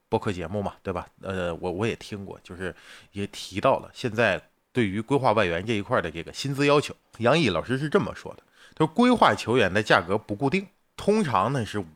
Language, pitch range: Chinese, 100-145 Hz